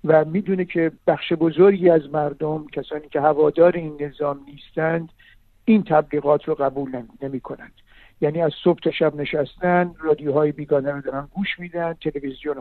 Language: Persian